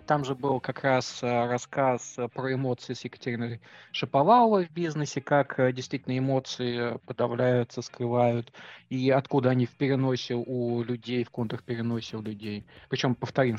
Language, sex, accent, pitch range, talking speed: Russian, male, native, 120-140 Hz, 135 wpm